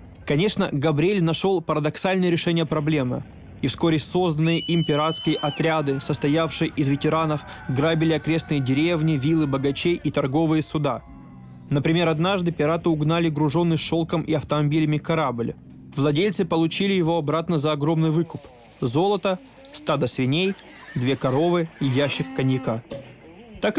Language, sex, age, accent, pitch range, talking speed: Russian, male, 20-39, native, 140-170 Hz, 120 wpm